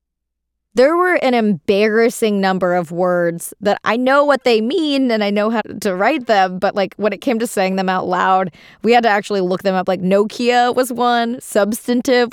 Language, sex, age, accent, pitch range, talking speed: English, female, 20-39, American, 155-220 Hz, 205 wpm